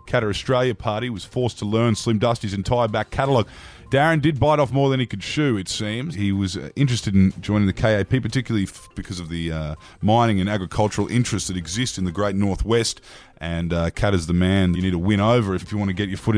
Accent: Australian